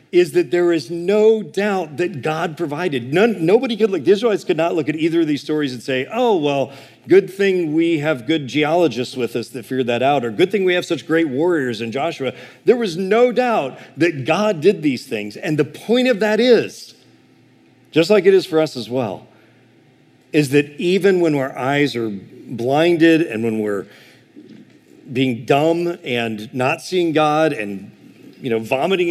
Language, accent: English, American